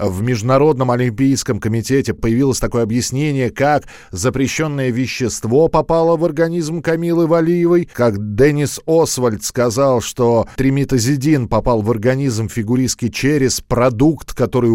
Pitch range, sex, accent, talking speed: 120-155 Hz, male, native, 115 wpm